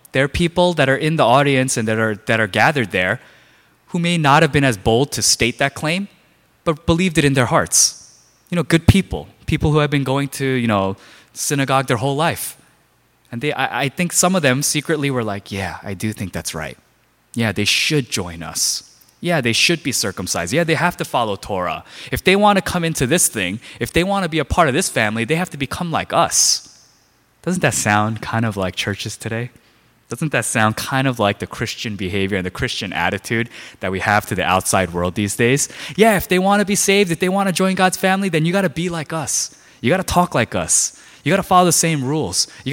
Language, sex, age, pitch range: Korean, male, 20-39, 105-160 Hz